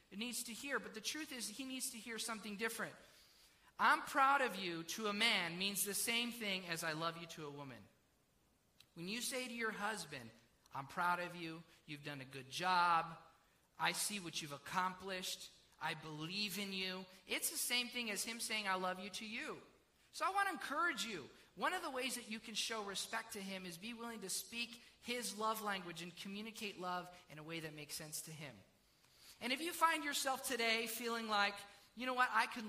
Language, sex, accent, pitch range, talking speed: English, male, American, 175-225 Hz, 215 wpm